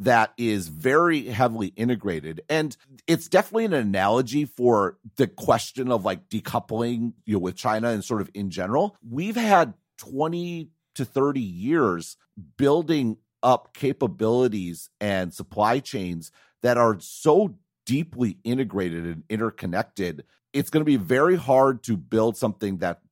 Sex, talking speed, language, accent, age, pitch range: male, 140 wpm, English, American, 40-59, 100-145 Hz